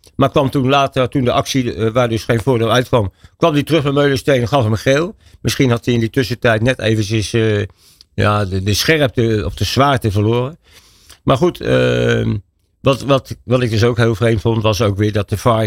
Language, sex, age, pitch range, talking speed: Dutch, male, 60-79, 105-130 Hz, 220 wpm